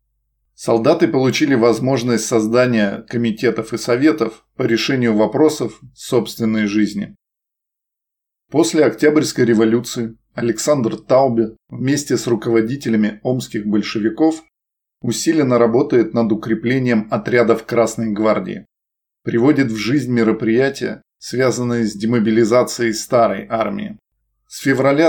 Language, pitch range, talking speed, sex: Russian, 110-130 Hz, 95 wpm, male